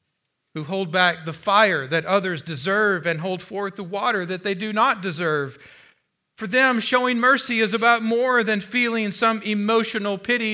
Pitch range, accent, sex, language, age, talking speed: 165-215 Hz, American, male, English, 40-59, 170 wpm